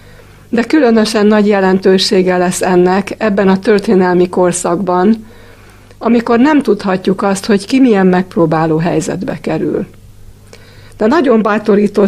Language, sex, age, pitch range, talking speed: Hungarian, female, 60-79, 170-210 Hz, 115 wpm